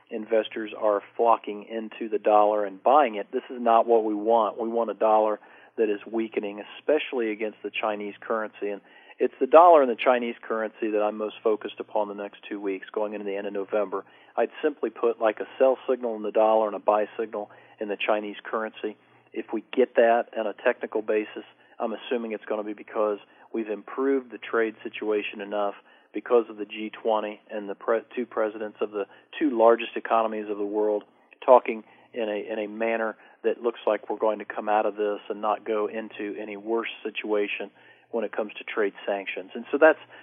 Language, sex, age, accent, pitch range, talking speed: English, male, 40-59, American, 105-115 Hz, 205 wpm